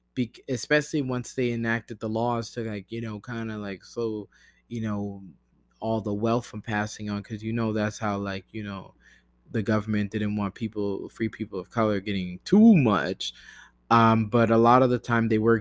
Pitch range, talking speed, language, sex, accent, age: 110-125 Hz, 200 wpm, English, male, American, 20-39